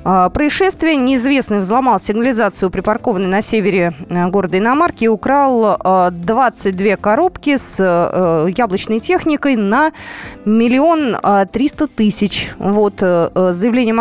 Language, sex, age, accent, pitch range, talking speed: Russian, female, 20-39, native, 195-265 Hz, 100 wpm